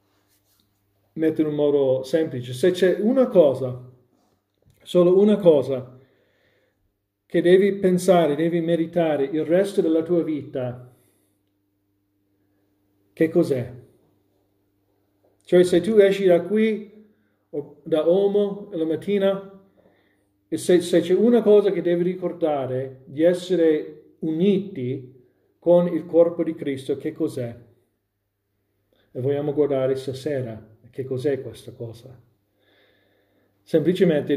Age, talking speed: 40-59, 110 wpm